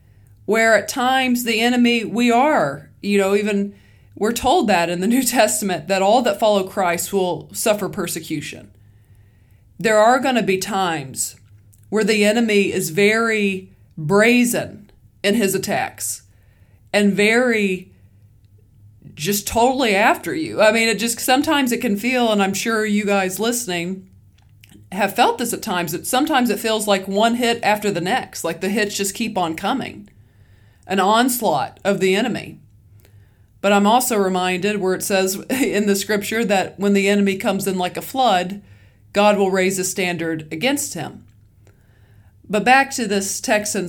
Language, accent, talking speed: English, American, 165 wpm